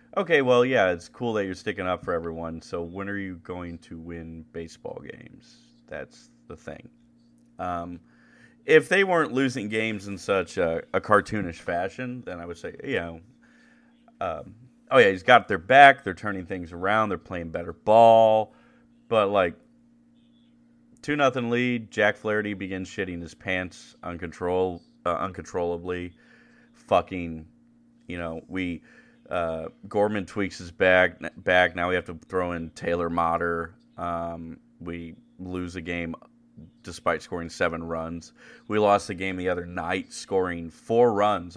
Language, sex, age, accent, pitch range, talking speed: English, male, 30-49, American, 85-120 Hz, 155 wpm